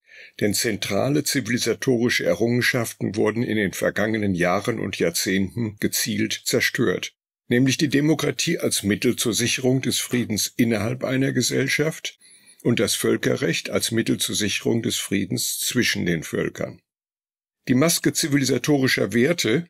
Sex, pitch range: male, 105-130 Hz